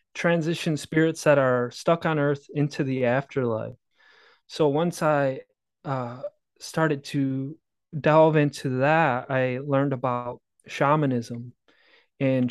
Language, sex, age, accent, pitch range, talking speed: English, male, 20-39, American, 125-150 Hz, 115 wpm